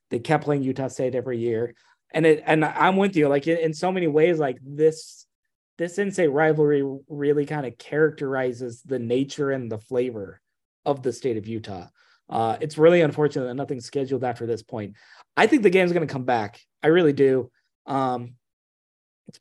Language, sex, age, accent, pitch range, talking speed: English, male, 30-49, American, 125-150 Hz, 185 wpm